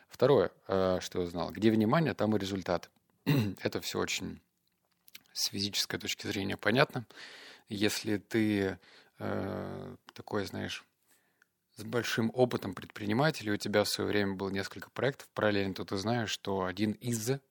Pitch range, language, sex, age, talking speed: 95-110 Hz, Russian, male, 30-49, 140 wpm